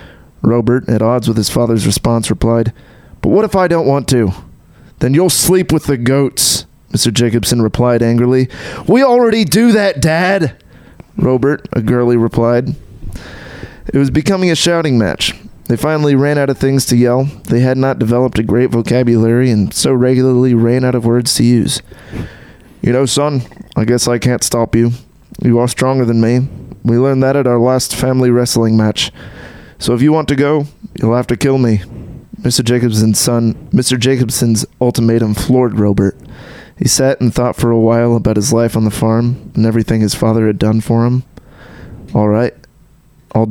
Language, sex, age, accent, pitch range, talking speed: English, male, 30-49, American, 115-130 Hz, 180 wpm